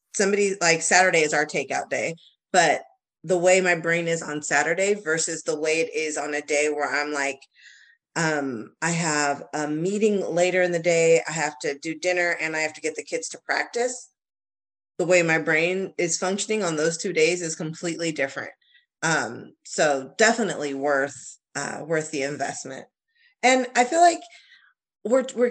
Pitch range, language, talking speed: 165-240 Hz, English, 175 wpm